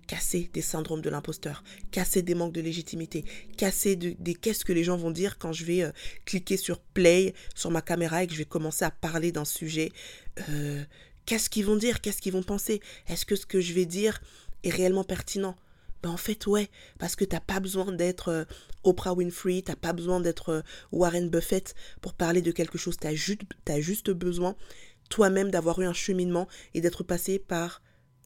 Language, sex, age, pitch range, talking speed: French, female, 20-39, 165-195 Hz, 200 wpm